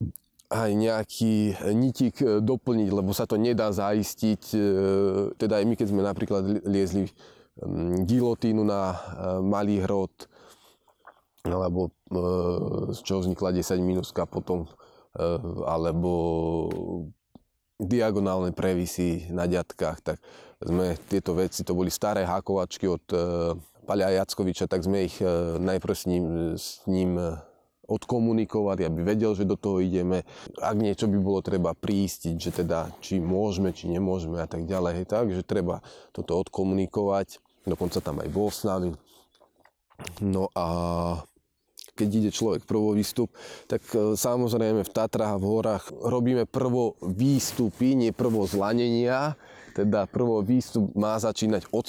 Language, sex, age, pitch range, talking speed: Slovak, male, 20-39, 90-110 Hz, 125 wpm